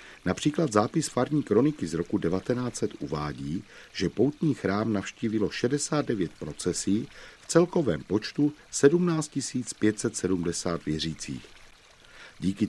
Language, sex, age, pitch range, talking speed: Czech, male, 40-59, 85-120 Hz, 100 wpm